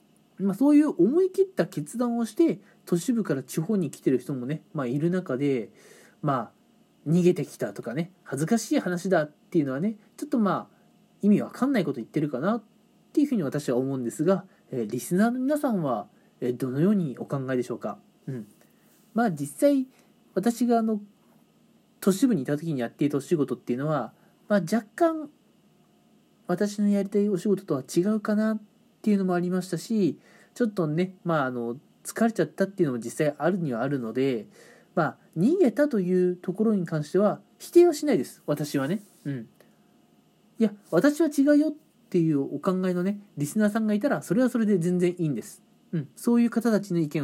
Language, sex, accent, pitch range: Japanese, male, native, 150-225 Hz